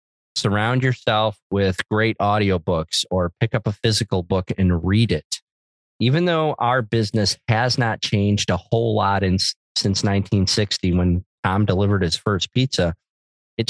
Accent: American